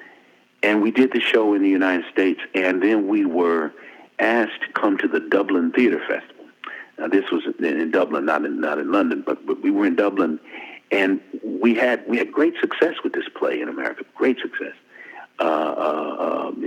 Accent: American